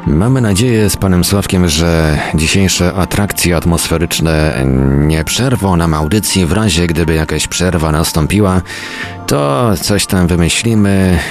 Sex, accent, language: male, native, Polish